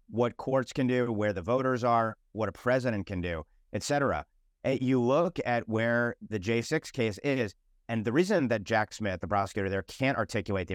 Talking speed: 195 wpm